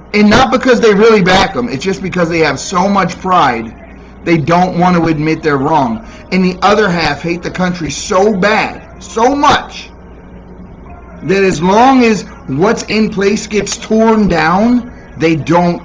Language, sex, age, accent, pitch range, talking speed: English, male, 30-49, American, 145-195 Hz, 170 wpm